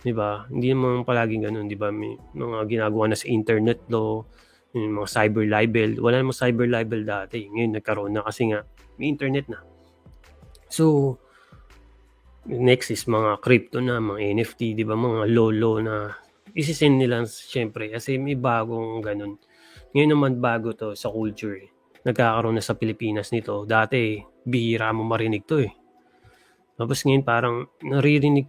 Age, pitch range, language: 20-39, 110-125 Hz, Filipino